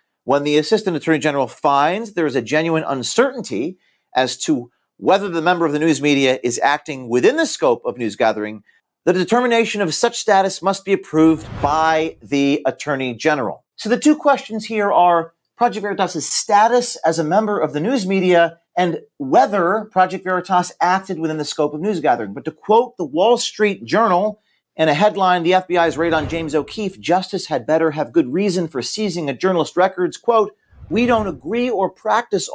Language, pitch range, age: English, 160-220 Hz, 40-59